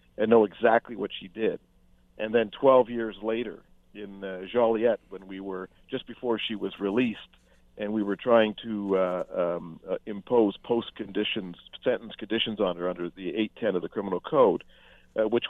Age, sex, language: 50-69, male, English